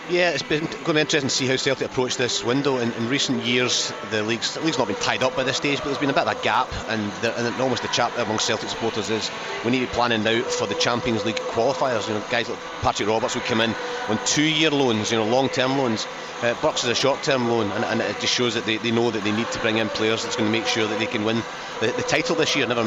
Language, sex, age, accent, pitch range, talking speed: English, male, 30-49, British, 110-130 Hz, 290 wpm